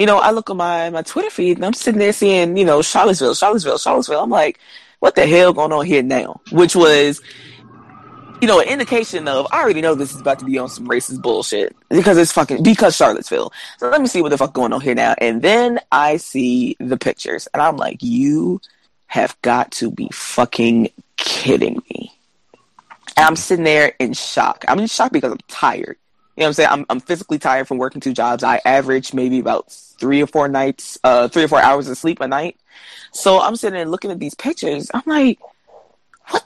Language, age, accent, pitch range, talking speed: English, 20-39, American, 140-205 Hz, 215 wpm